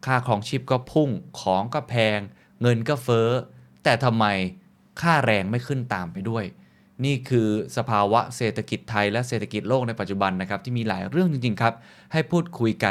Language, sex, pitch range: Thai, male, 95-125 Hz